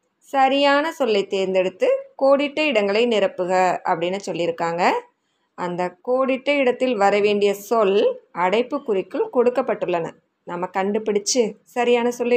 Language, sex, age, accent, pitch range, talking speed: Tamil, female, 20-39, native, 190-270 Hz, 95 wpm